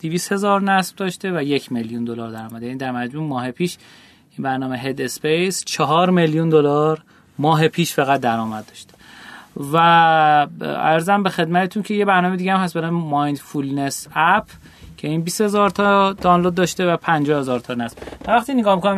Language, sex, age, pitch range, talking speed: Persian, male, 30-49, 135-190 Hz, 170 wpm